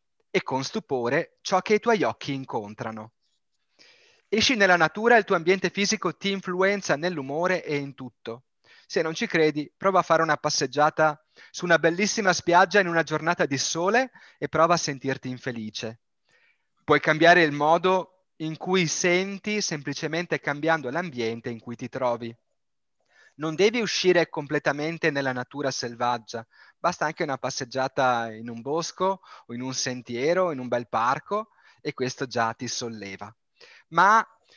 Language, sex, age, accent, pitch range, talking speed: Italian, male, 30-49, native, 130-180 Hz, 155 wpm